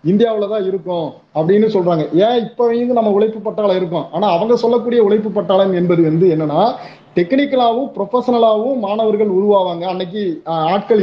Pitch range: 180-215 Hz